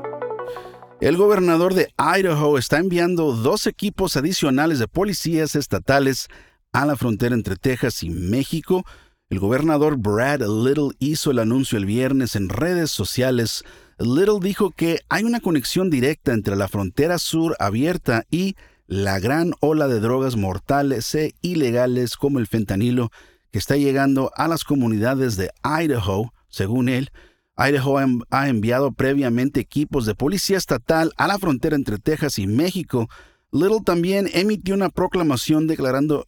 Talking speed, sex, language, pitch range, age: 140 wpm, male, Spanish, 120-160 Hz, 50-69